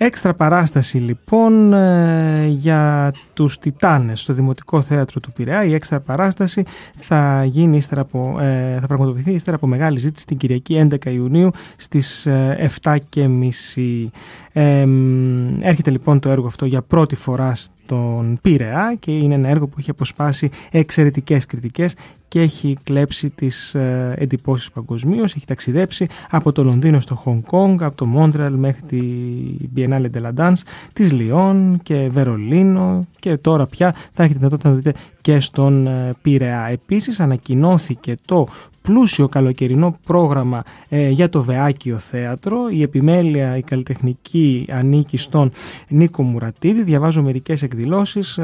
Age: 20-39